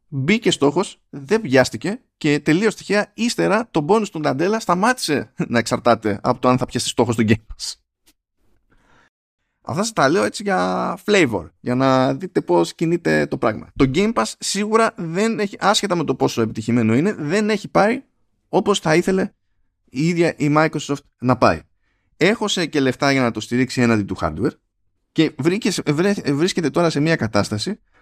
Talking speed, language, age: 170 wpm, Greek, 20-39